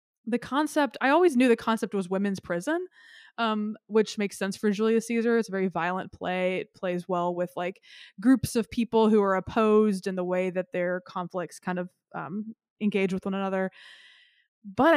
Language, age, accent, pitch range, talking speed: English, 20-39, American, 190-235 Hz, 185 wpm